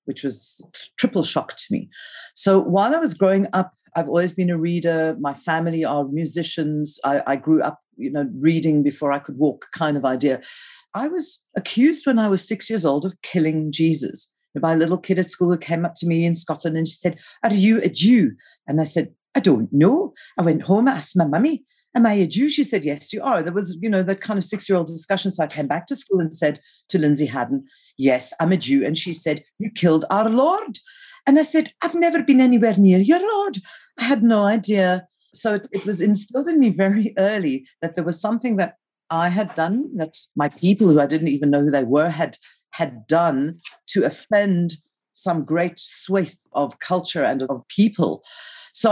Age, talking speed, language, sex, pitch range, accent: 50-69, 215 wpm, English, female, 155-215 Hz, British